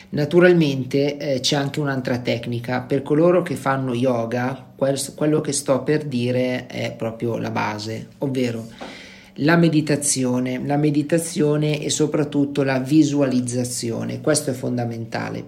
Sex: male